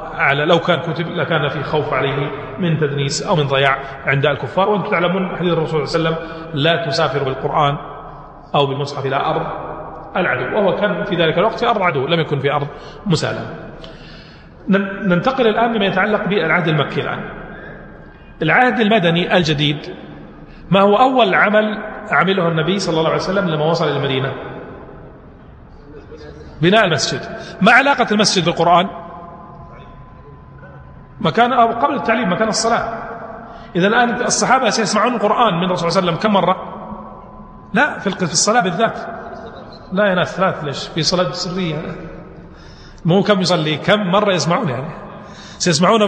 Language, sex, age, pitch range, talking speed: Arabic, male, 40-59, 160-210 Hz, 145 wpm